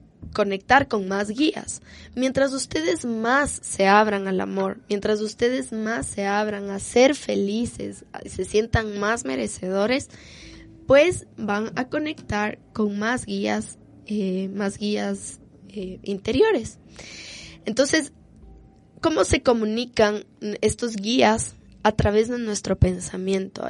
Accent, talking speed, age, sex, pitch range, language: Mexican, 115 wpm, 10-29, female, 200-230 Hz, Spanish